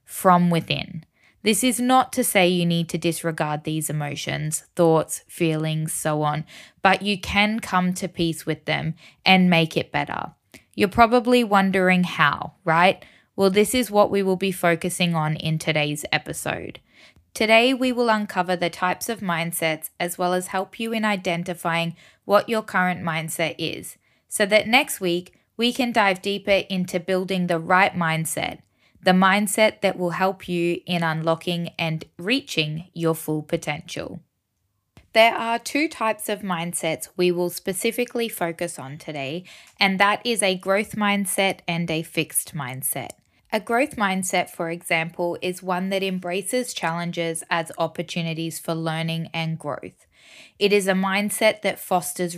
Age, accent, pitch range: 20-39, Australian, 165-200 Hz